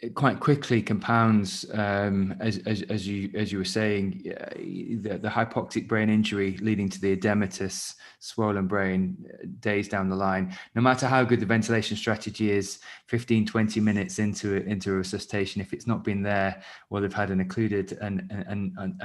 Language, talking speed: English, 175 wpm